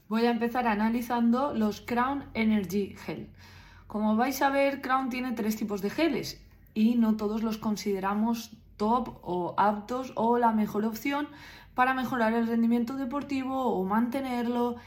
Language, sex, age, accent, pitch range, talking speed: Spanish, female, 20-39, Spanish, 205-270 Hz, 150 wpm